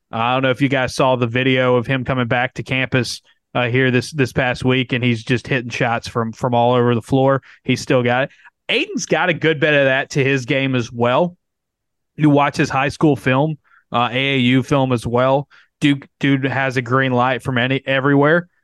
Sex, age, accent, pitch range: male, 20-39, American, 125-150 Hz